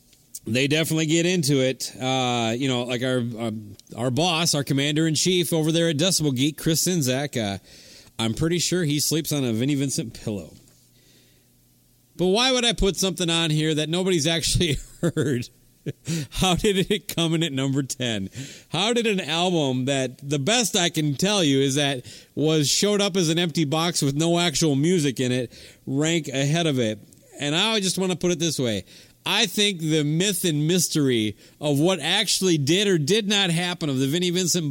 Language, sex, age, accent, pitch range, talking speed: English, male, 40-59, American, 135-185 Hz, 190 wpm